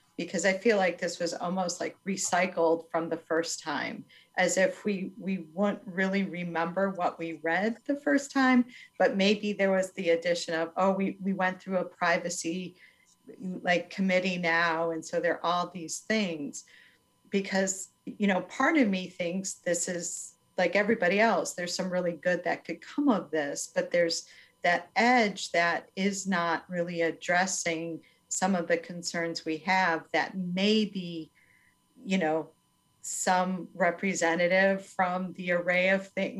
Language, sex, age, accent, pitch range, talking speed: English, female, 40-59, American, 170-195 Hz, 160 wpm